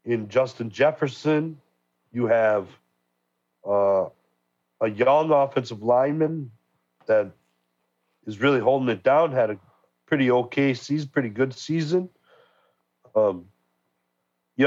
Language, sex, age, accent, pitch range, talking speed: English, male, 40-59, American, 110-155 Hz, 105 wpm